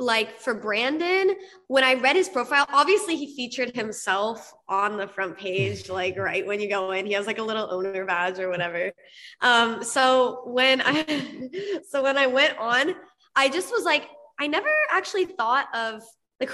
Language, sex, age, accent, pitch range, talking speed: English, female, 20-39, American, 210-275 Hz, 180 wpm